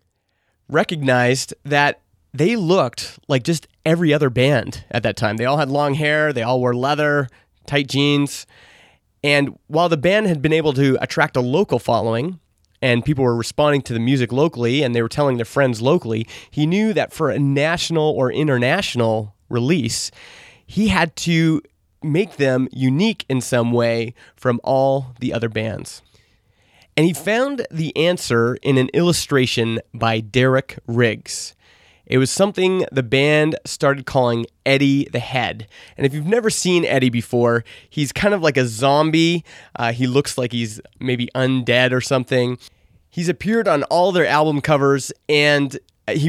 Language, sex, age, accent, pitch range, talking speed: English, male, 30-49, American, 120-150 Hz, 160 wpm